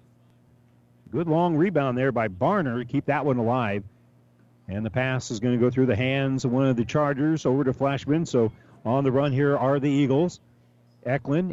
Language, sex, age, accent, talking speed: English, male, 40-59, American, 200 wpm